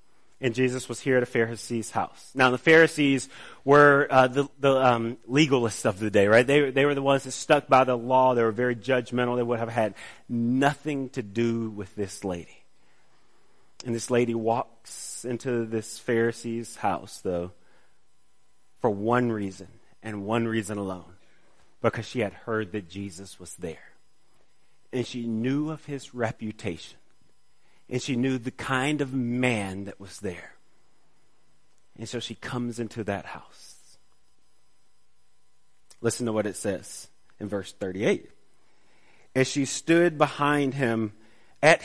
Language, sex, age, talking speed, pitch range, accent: English, male, 30-49, 150 wpm, 105-135 Hz, American